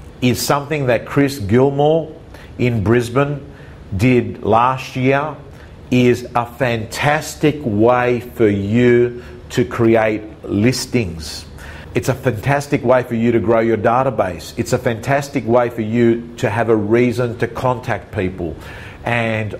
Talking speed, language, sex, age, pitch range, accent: 130 wpm, English, male, 50-69, 110-130 Hz, Australian